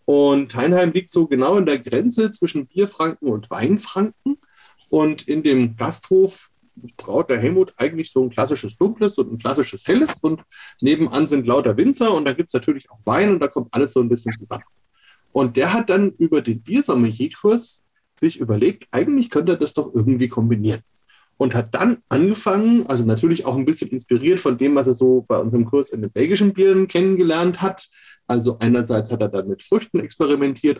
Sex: male